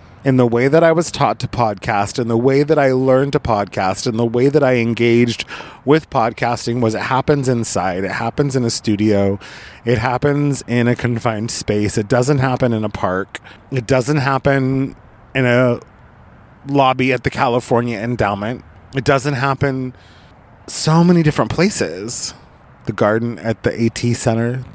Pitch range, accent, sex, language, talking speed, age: 110-130 Hz, American, male, English, 165 wpm, 30-49